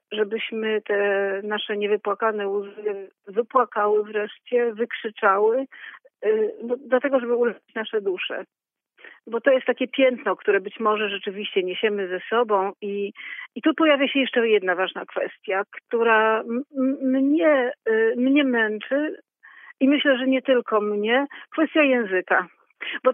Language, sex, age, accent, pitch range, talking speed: Polish, female, 40-59, native, 200-245 Hz, 130 wpm